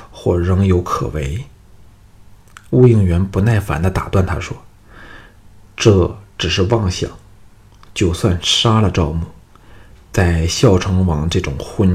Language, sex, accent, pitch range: Chinese, male, native, 85-100 Hz